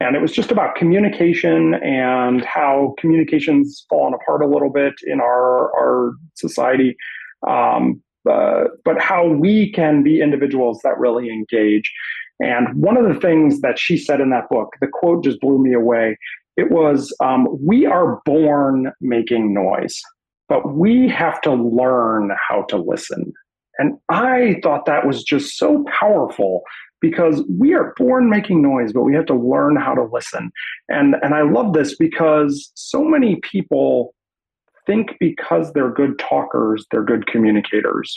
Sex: male